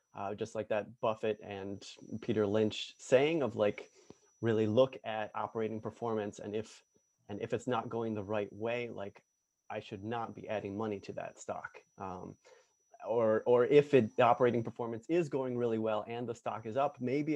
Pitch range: 105-120 Hz